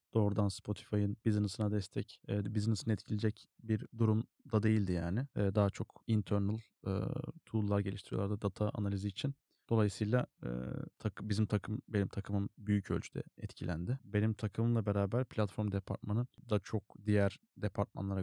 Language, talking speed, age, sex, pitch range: Turkish, 135 wpm, 30-49, male, 100-115 Hz